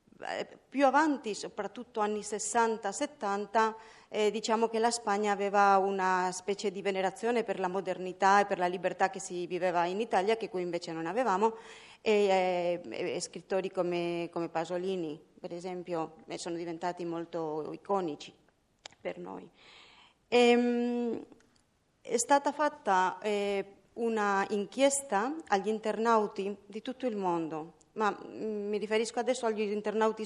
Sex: female